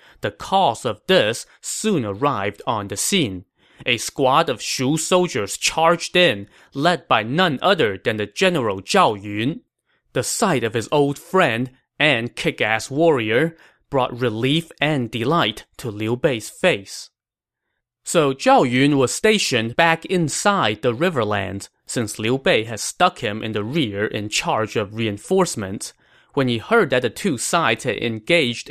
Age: 20-39